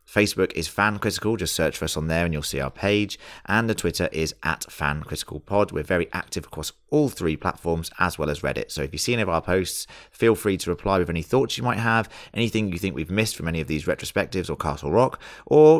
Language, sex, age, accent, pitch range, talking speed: English, male, 30-49, British, 80-110 Hz, 250 wpm